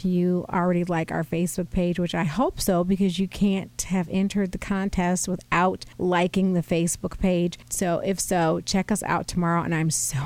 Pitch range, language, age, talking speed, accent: 170-195 Hz, English, 40-59, 185 wpm, American